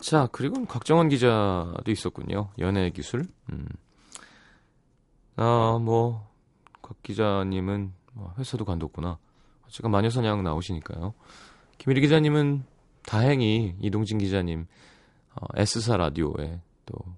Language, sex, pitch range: Korean, male, 95-130 Hz